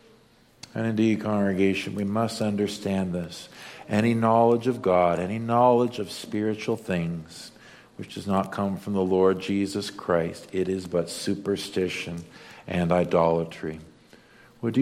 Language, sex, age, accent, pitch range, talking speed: English, male, 50-69, American, 90-115 Hz, 130 wpm